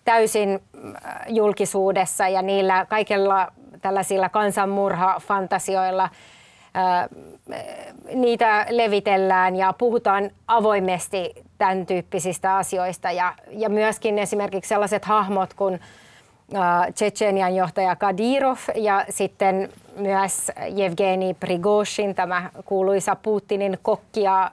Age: 30-49